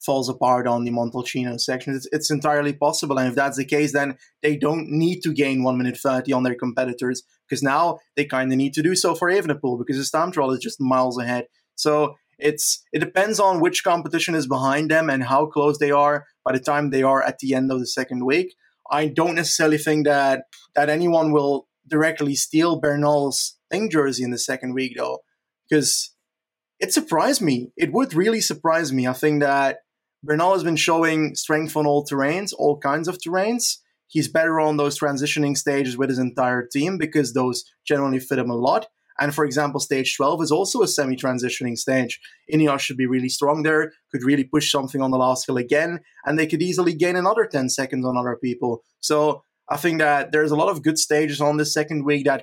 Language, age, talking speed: English, 20-39, 210 wpm